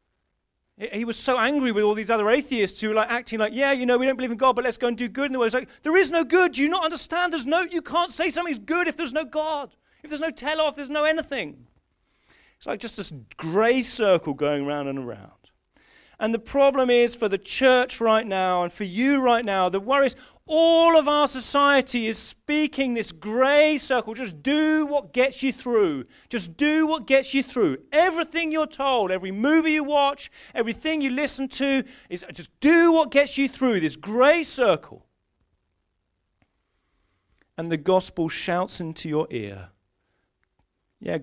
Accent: British